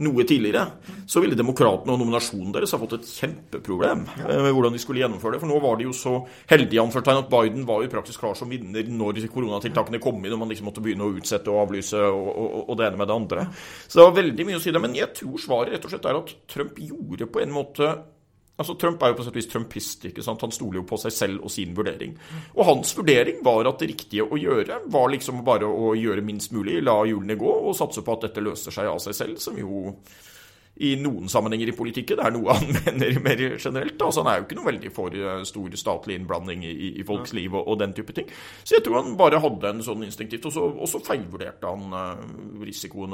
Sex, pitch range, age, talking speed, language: male, 105-145 Hz, 30-49, 240 wpm, English